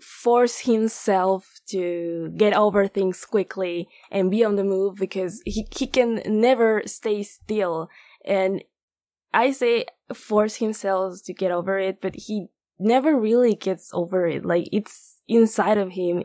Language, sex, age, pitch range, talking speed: English, female, 10-29, 180-220 Hz, 150 wpm